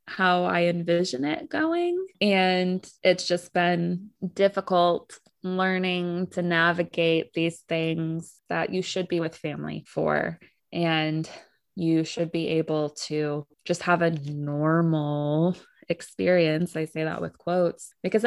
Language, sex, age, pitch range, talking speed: English, female, 20-39, 160-180 Hz, 130 wpm